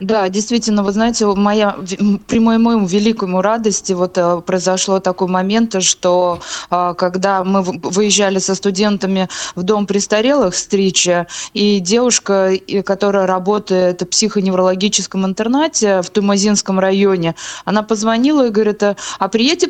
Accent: native